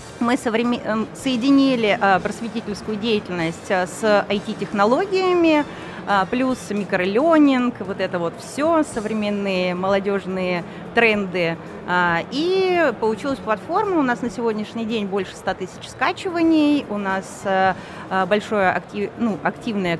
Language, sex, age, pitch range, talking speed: Russian, female, 30-49, 190-245 Hz, 105 wpm